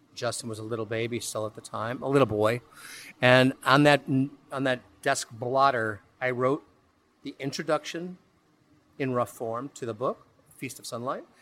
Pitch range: 115-140 Hz